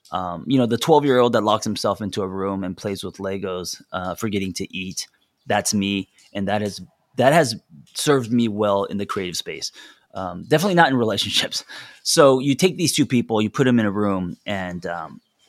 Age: 30-49